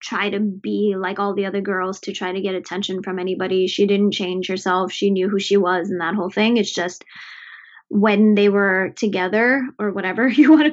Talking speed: 220 wpm